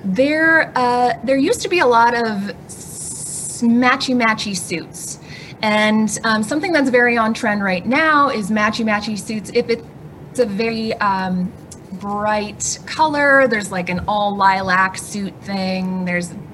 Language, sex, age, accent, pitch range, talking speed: English, female, 20-39, American, 185-235 Hz, 145 wpm